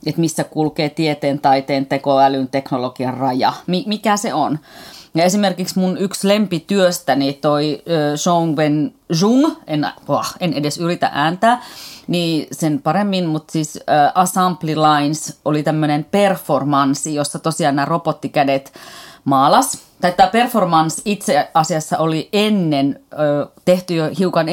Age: 30-49